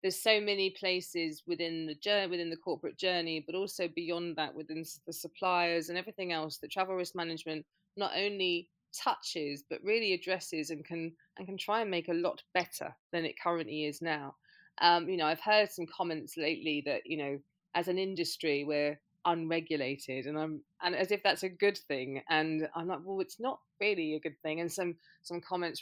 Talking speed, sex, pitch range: 200 wpm, female, 155-185 Hz